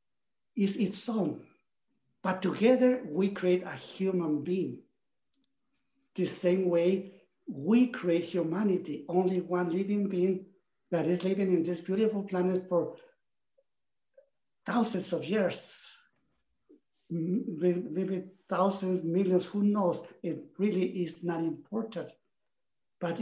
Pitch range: 175-215 Hz